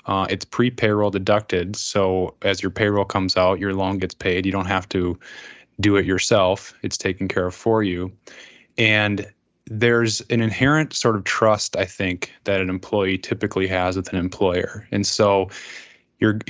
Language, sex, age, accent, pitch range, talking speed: English, male, 10-29, American, 95-110 Hz, 170 wpm